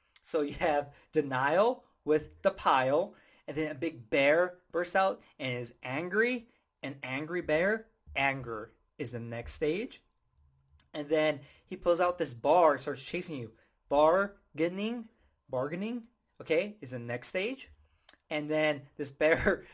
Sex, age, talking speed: male, 20-39, 145 wpm